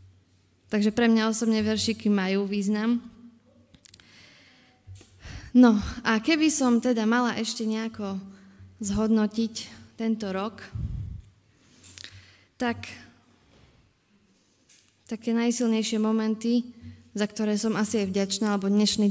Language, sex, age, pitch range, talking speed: Slovak, female, 20-39, 195-230 Hz, 95 wpm